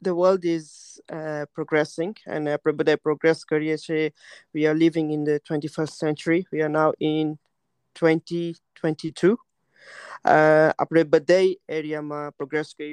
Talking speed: 135 wpm